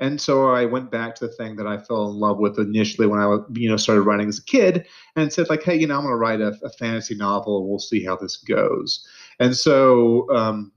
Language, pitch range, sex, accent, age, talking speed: English, 105-130 Hz, male, American, 30-49, 260 wpm